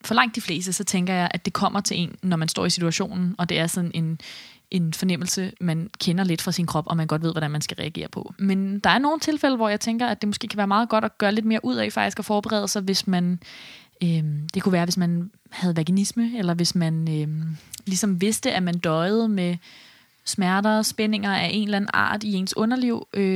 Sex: female